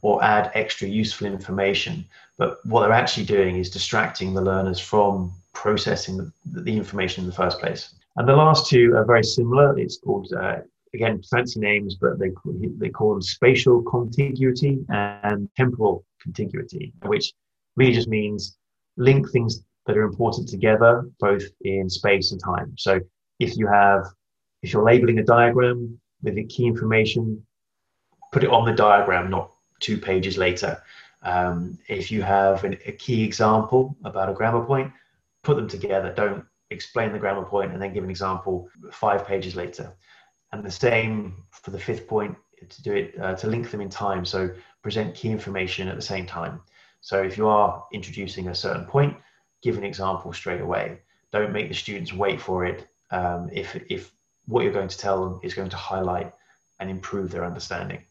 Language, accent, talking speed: English, British, 175 wpm